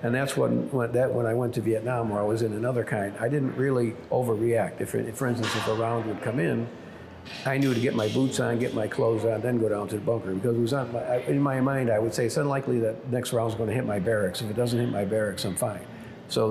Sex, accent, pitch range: male, American, 105-125 Hz